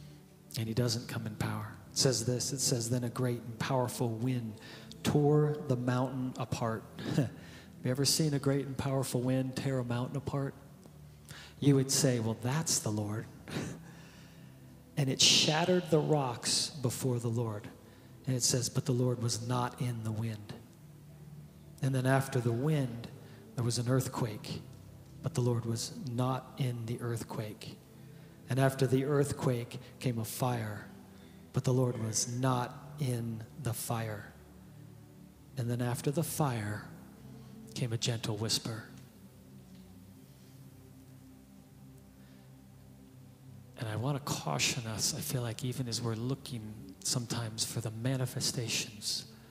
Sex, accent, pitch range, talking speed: male, American, 110-135 Hz, 145 wpm